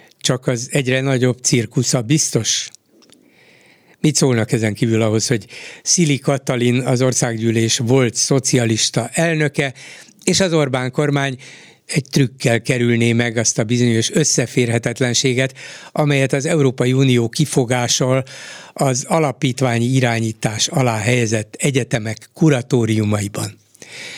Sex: male